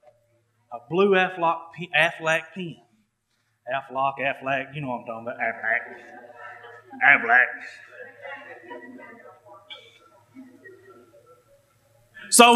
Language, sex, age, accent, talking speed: English, male, 30-49, American, 70 wpm